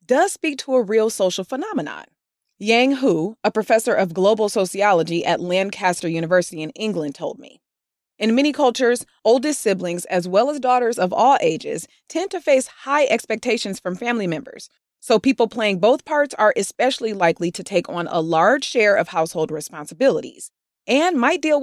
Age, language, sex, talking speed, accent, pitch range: 30-49, English, female, 170 wpm, American, 180-260 Hz